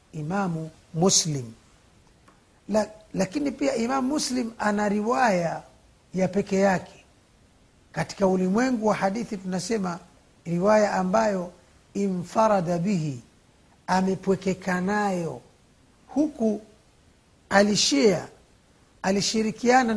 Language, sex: Swahili, male